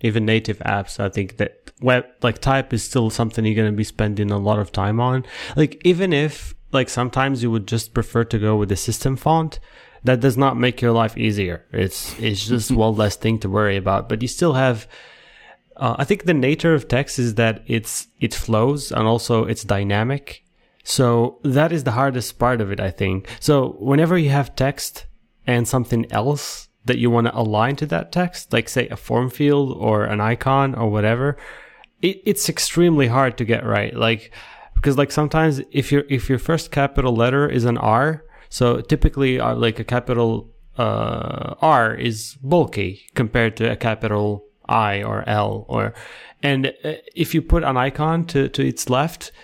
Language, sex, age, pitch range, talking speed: English, male, 20-39, 110-140 Hz, 190 wpm